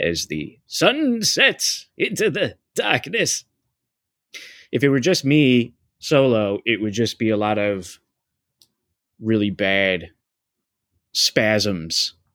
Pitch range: 95-120 Hz